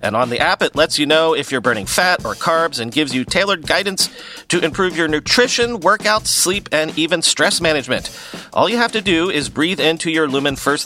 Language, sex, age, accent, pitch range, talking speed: English, male, 40-59, American, 140-185 Hz, 220 wpm